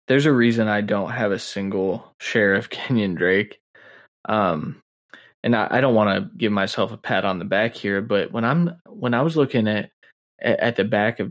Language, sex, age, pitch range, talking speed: English, male, 20-39, 105-120 Hz, 220 wpm